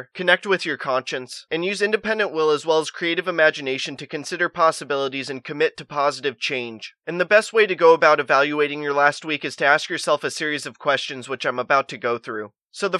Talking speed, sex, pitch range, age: 220 wpm, male, 140-175 Hz, 20-39